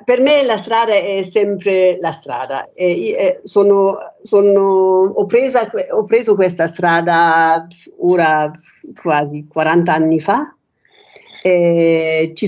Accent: native